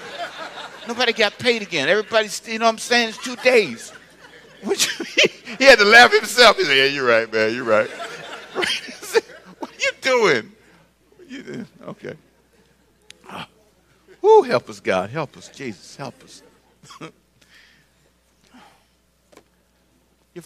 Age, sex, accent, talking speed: 60-79, male, American, 145 wpm